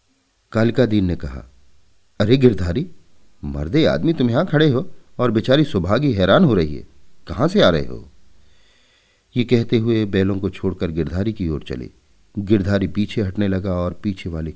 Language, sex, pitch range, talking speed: Hindi, male, 85-110 Hz, 170 wpm